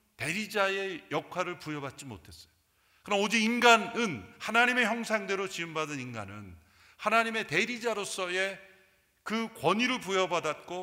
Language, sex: Korean, male